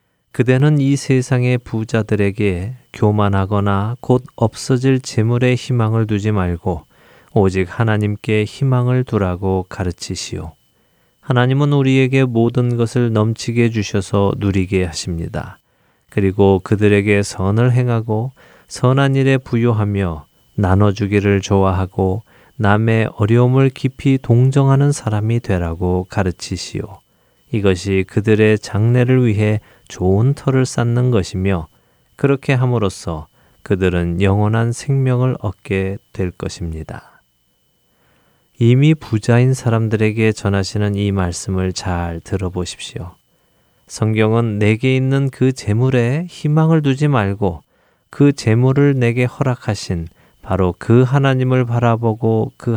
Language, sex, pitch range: Korean, male, 95-125 Hz